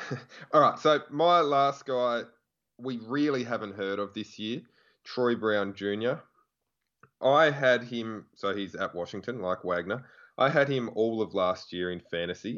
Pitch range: 95-125 Hz